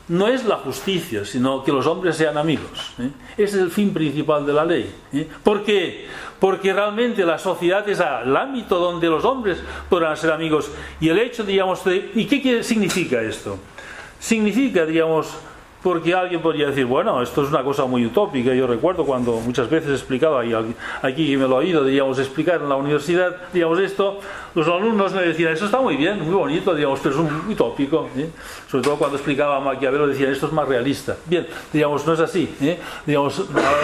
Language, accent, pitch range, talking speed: English, Spanish, 150-210 Hz, 195 wpm